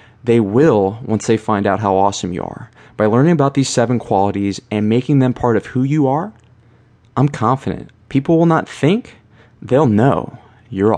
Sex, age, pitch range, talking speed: male, 20-39, 105-135 Hz, 180 wpm